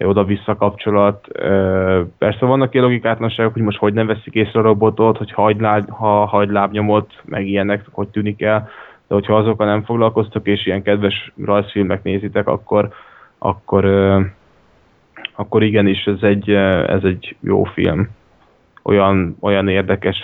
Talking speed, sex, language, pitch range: 135 wpm, male, Hungarian, 100-105 Hz